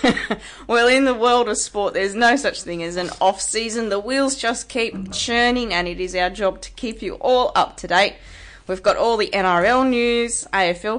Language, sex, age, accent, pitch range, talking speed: English, female, 20-39, Australian, 185-240 Hz, 205 wpm